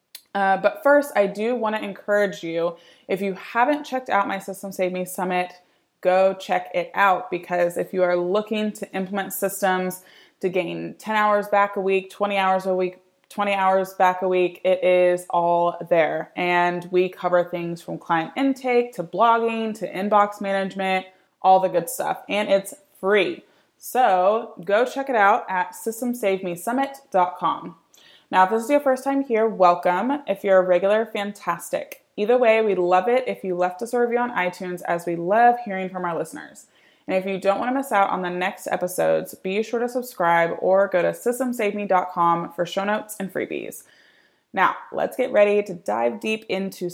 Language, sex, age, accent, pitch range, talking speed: English, female, 20-39, American, 180-215 Hz, 185 wpm